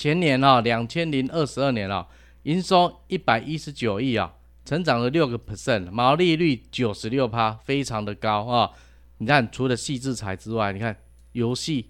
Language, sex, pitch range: Chinese, male, 105-150 Hz